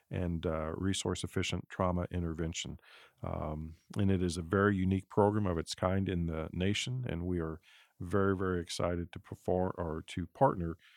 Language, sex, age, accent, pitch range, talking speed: English, male, 50-69, American, 85-100 Hz, 170 wpm